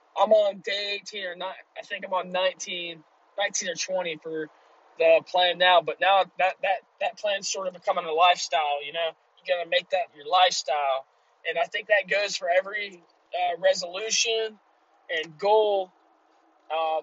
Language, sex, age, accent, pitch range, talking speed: English, male, 20-39, American, 180-225 Hz, 185 wpm